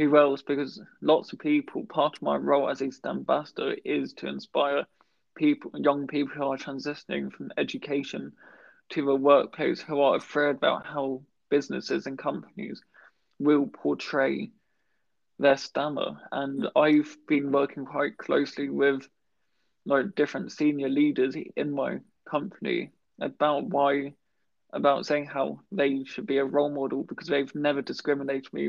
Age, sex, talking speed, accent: 20-39, male, 140 wpm, British